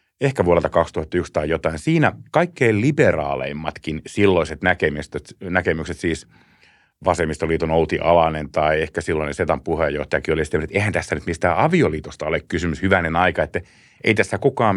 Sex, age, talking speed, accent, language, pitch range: male, 30-49, 145 wpm, native, Finnish, 80-120 Hz